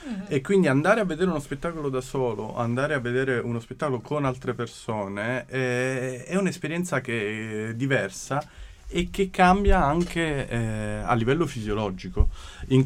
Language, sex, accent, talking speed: Italian, male, native, 150 wpm